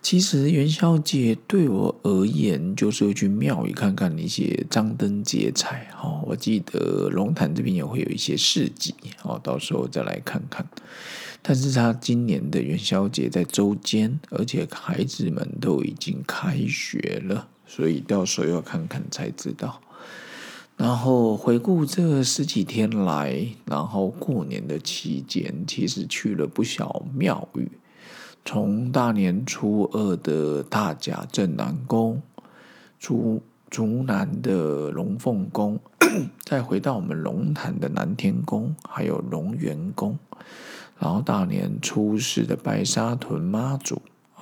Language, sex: Chinese, male